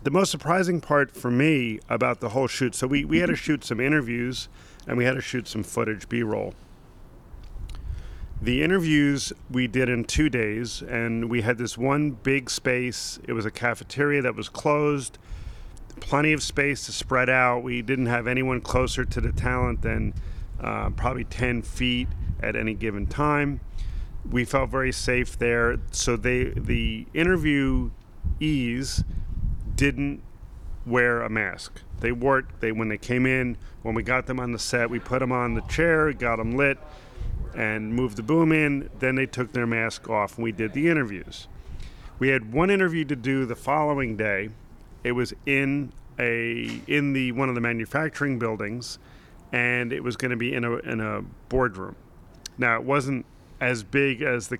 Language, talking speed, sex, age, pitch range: English, 175 wpm, male, 40-59, 110-135 Hz